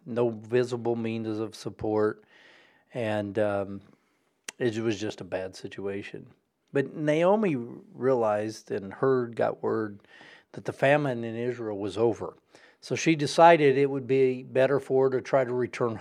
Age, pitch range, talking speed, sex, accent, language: 40-59, 110-135 Hz, 150 wpm, male, American, English